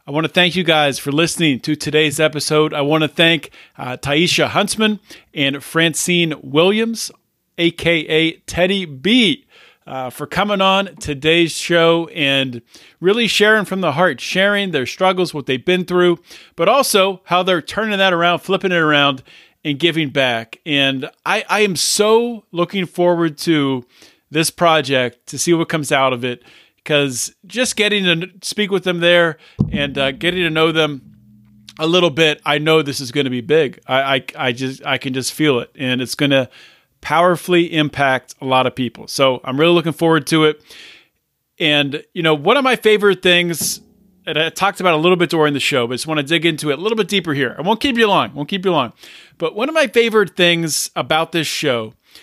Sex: male